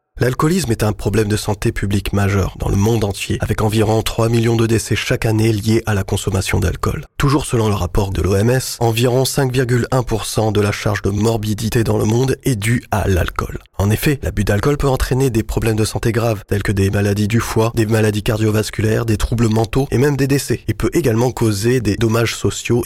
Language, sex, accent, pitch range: French, male, French, 105-115 Hz